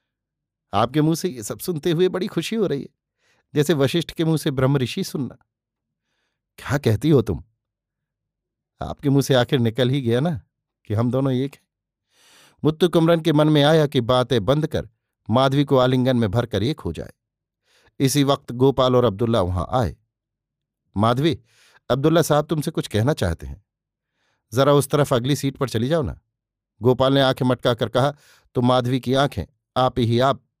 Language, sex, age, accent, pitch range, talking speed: Hindi, male, 50-69, native, 120-145 Hz, 180 wpm